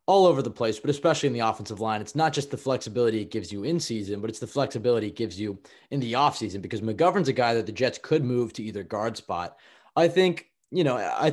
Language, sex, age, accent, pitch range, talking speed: English, male, 20-39, American, 110-140 Hz, 260 wpm